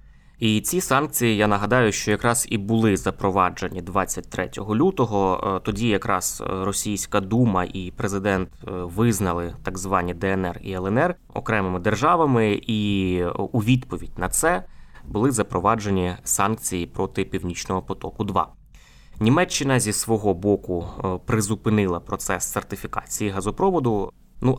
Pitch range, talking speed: 95-115 Hz, 110 wpm